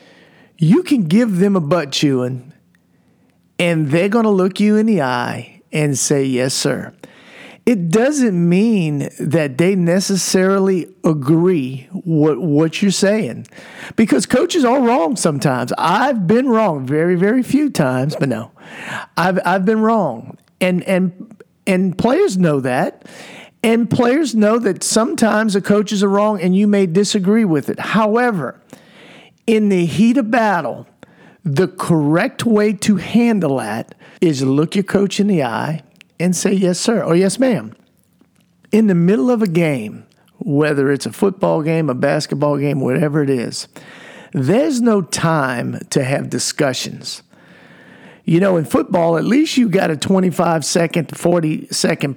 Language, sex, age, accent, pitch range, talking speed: English, male, 50-69, American, 160-220 Hz, 155 wpm